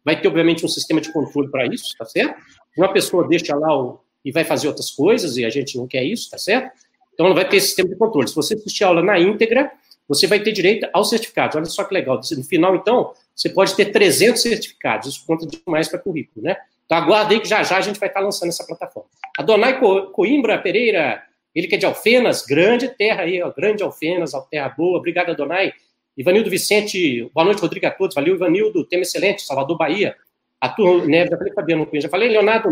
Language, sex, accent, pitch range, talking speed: English, male, Brazilian, 170-240 Hz, 225 wpm